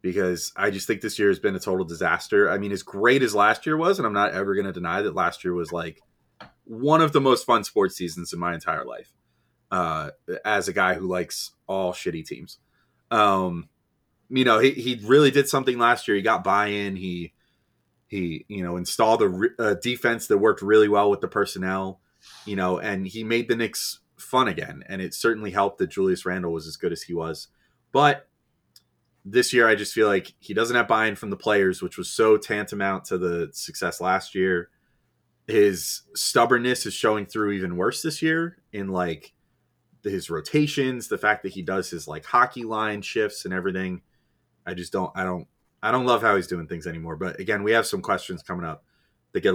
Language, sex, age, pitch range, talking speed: English, male, 30-49, 90-125 Hz, 210 wpm